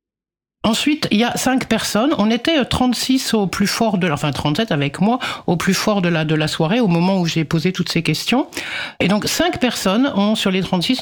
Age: 60-79